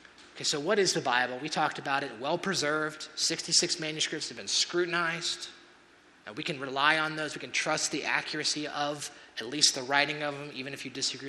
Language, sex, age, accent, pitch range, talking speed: English, male, 30-49, American, 135-175 Hz, 195 wpm